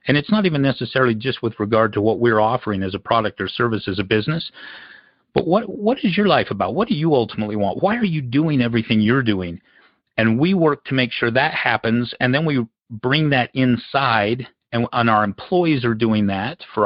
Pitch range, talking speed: 105-125 Hz, 215 wpm